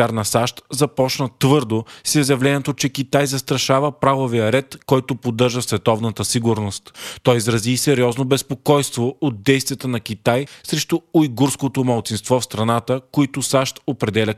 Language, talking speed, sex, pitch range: Bulgarian, 130 wpm, male, 115-140 Hz